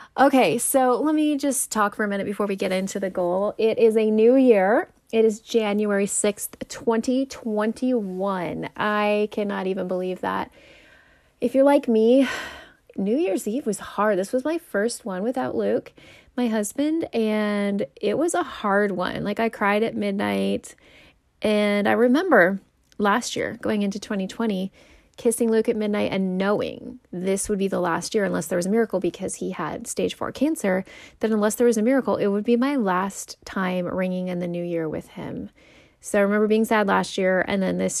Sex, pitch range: female, 190-235 Hz